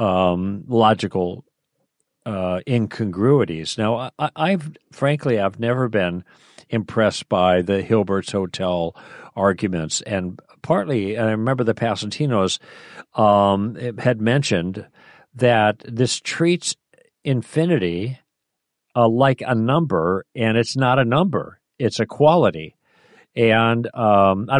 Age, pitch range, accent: 50-69, 100-130 Hz, American